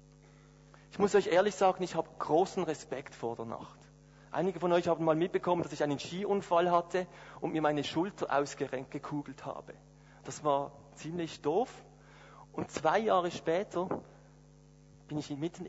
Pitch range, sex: 145-185 Hz, male